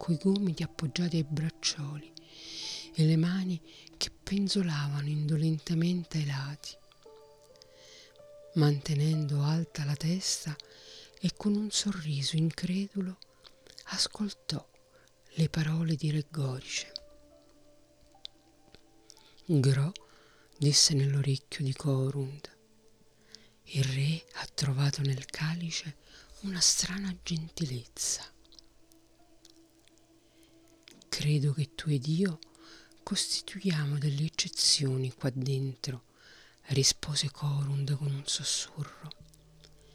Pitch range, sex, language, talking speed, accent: 145-175 Hz, female, Italian, 85 wpm, native